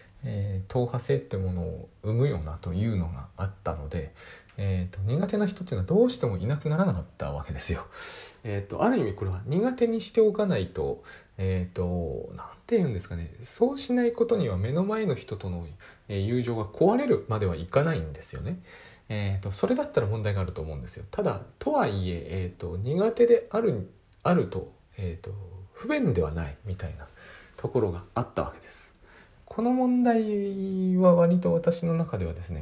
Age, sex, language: 40-59, male, Japanese